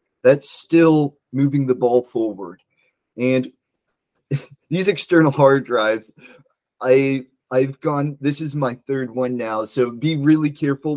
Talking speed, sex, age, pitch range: 130 wpm, male, 30-49, 120-145 Hz